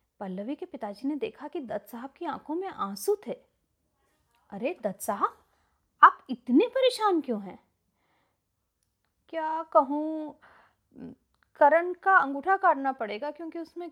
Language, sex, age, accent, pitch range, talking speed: Hindi, female, 30-49, native, 215-320 Hz, 130 wpm